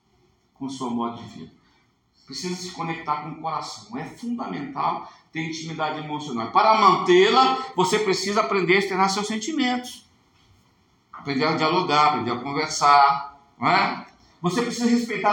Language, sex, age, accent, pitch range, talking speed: Portuguese, male, 60-79, Brazilian, 145-225 Hz, 145 wpm